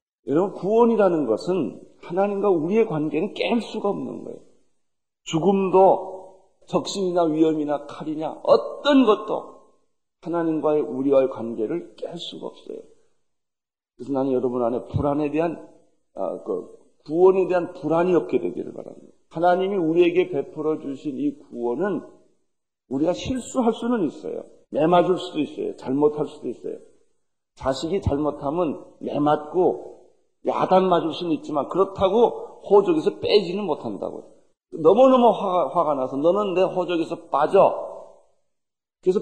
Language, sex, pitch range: Korean, male, 150-235 Hz